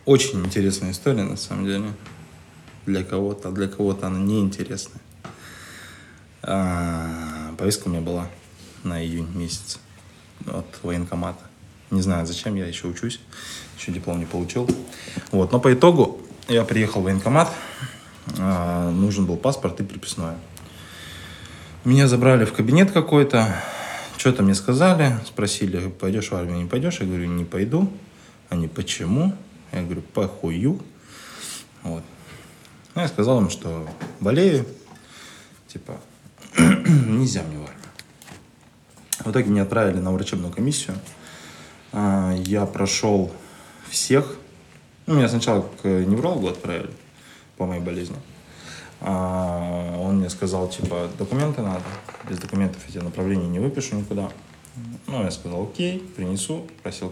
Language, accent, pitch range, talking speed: Russian, native, 85-110 Hz, 125 wpm